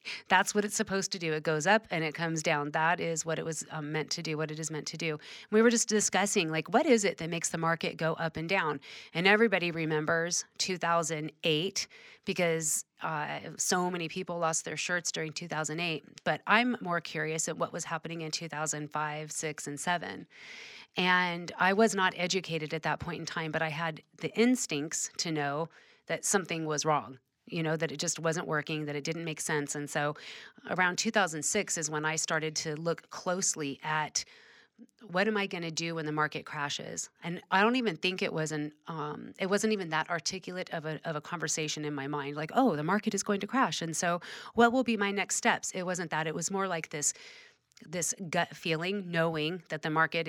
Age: 30-49